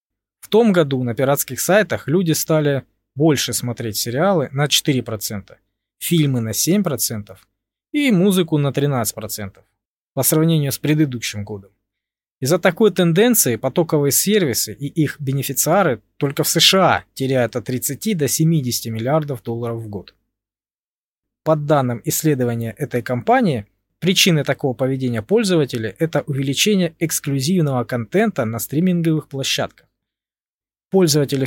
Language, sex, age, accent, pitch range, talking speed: Russian, male, 20-39, native, 115-160 Hz, 120 wpm